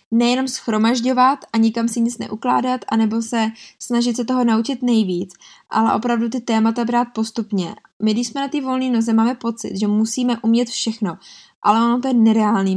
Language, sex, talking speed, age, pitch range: Czech, female, 180 wpm, 20-39, 220-255 Hz